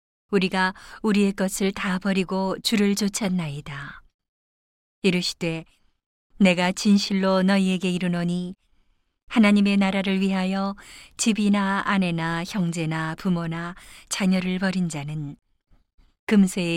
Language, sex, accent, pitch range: Korean, female, native, 175-205 Hz